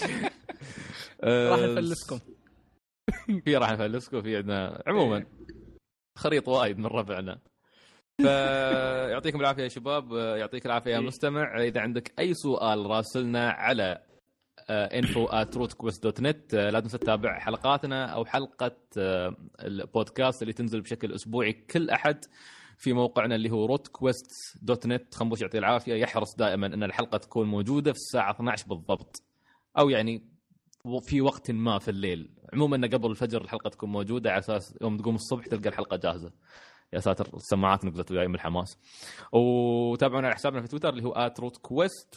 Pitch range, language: 110-130 Hz, Arabic